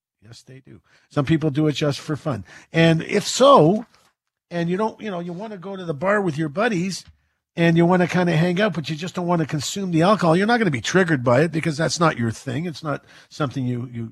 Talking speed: 270 wpm